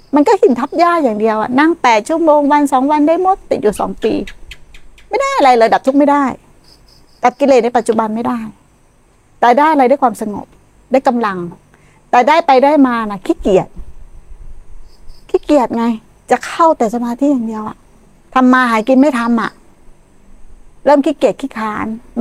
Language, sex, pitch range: Thai, female, 200-270 Hz